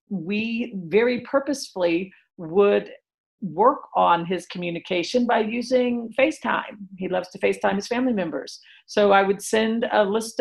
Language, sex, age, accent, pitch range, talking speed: English, female, 50-69, American, 200-250 Hz, 140 wpm